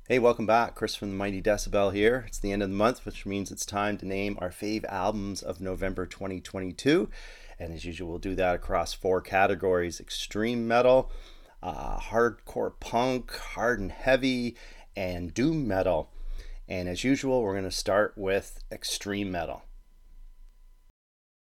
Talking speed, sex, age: 160 wpm, male, 30-49